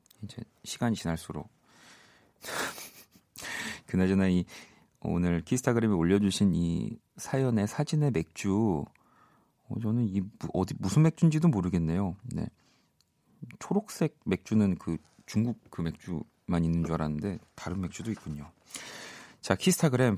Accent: native